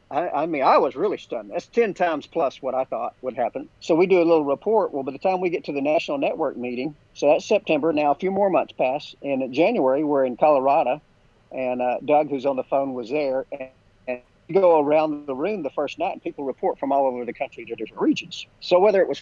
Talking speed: 255 wpm